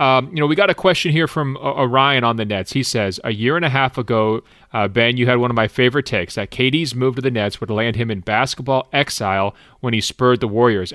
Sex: male